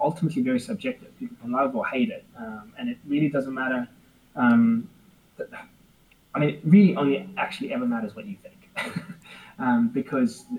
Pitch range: 150-235 Hz